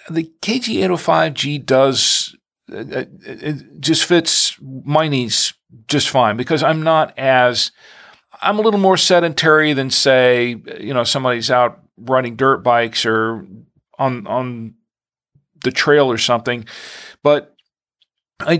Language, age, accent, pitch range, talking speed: English, 40-59, American, 120-150 Hz, 130 wpm